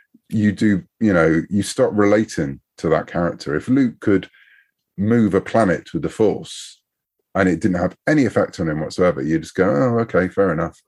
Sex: male